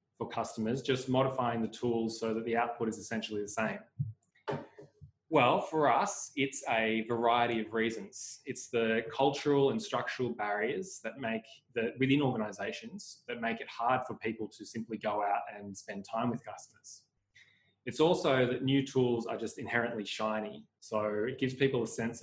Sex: male